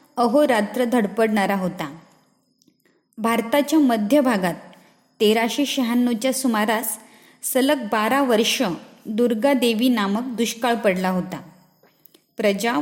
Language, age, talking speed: Marathi, 20-39, 85 wpm